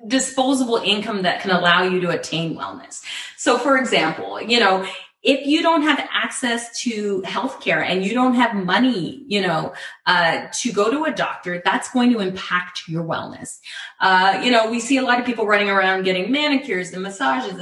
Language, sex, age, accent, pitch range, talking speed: English, female, 20-39, American, 190-265 Hz, 185 wpm